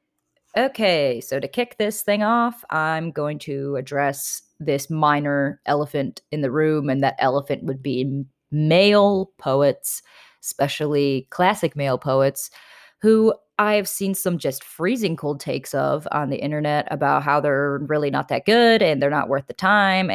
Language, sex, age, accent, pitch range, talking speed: English, female, 20-39, American, 140-190 Hz, 160 wpm